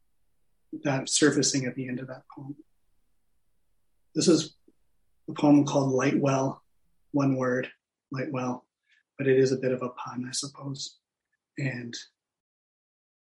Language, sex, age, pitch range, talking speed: English, male, 30-49, 125-150 Hz, 135 wpm